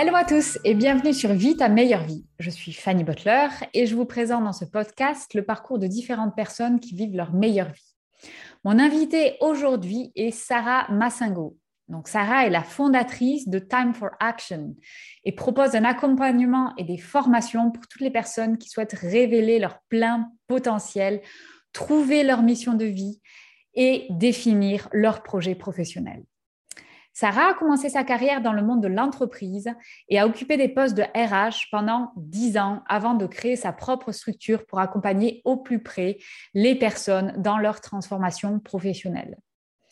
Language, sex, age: French, female, 20-39